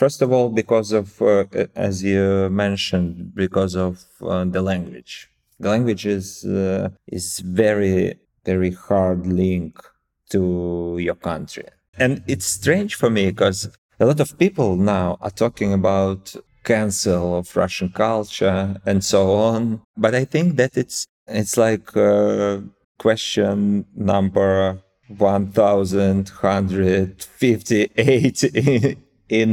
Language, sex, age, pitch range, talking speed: English, male, 30-49, 95-115 Hz, 120 wpm